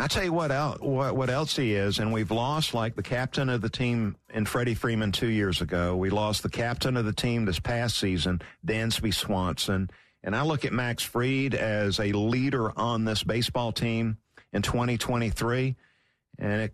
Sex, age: male, 50-69